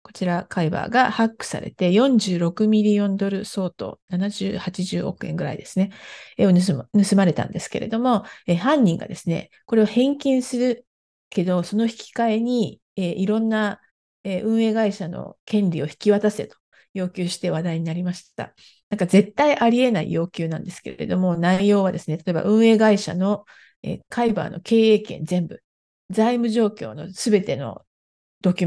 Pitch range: 175-220 Hz